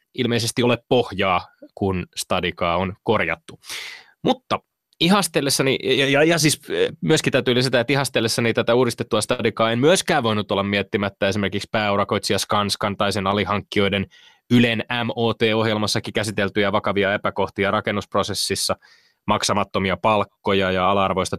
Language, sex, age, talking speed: Finnish, male, 20-39, 120 wpm